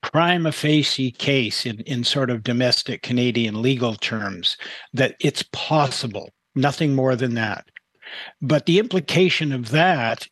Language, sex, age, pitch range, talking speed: English, male, 60-79, 125-150 Hz, 135 wpm